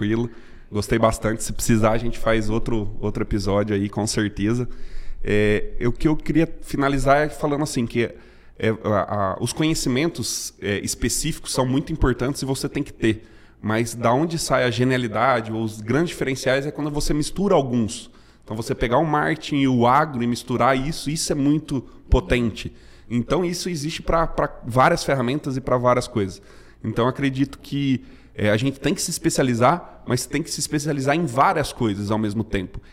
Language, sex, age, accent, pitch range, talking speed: Portuguese, male, 20-39, Brazilian, 110-150 Hz, 180 wpm